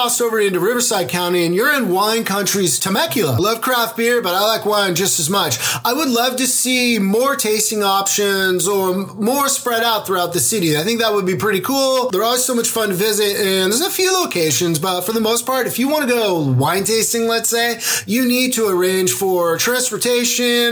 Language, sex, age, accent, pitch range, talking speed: English, male, 30-49, American, 175-235 Hz, 215 wpm